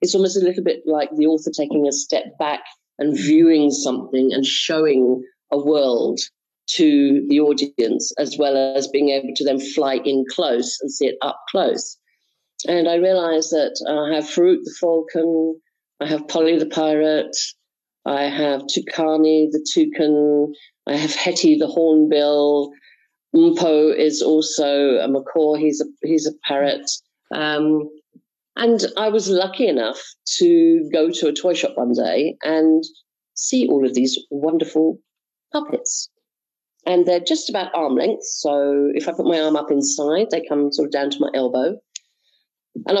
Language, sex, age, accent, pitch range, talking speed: English, female, 50-69, British, 150-185 Hz, 160 wpm